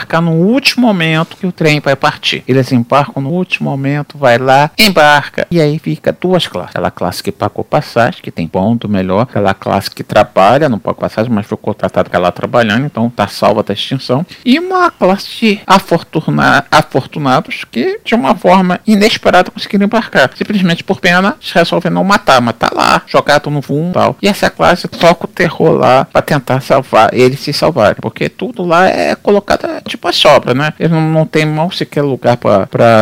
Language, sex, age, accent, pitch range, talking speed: Portuguese, male, 50-69, Brazilian, 125-175 Hz, 190 wpm